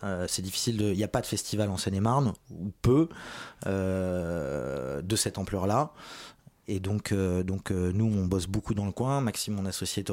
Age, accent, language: 20-39, French, French